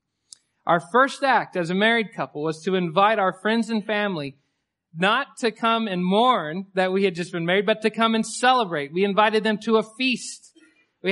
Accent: American